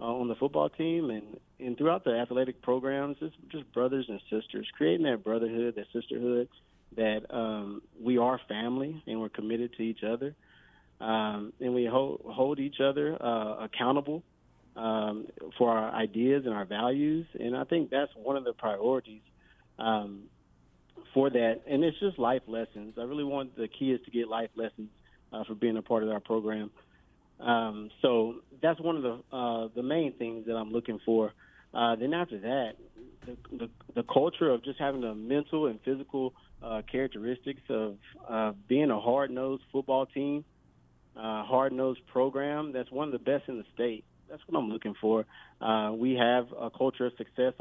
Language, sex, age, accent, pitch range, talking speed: English, male, 30-49, American, 110-135 Hz, 175 wpm